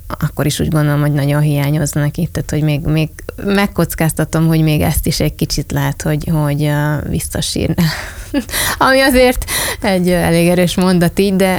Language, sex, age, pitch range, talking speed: Hungarian, female, 20-39, 155-165 Hz, 160 wpm